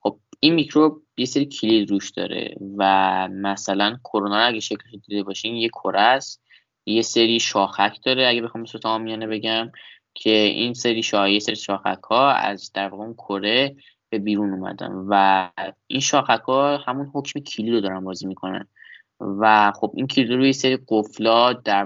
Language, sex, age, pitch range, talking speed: Persian, male, 20-39, 105-125 Hz, 150 wpm